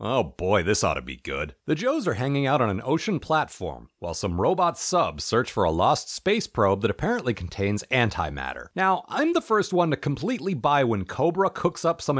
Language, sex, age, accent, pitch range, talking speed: English, male, 40-59, American, 110-170 Hz, 210 wpm